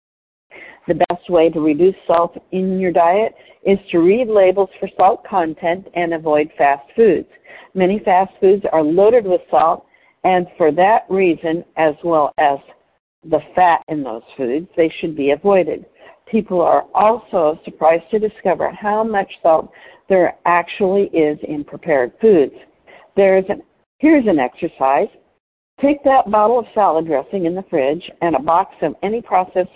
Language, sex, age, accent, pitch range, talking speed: English, female, 60-79, American, 165-225 Hz, 160 wpm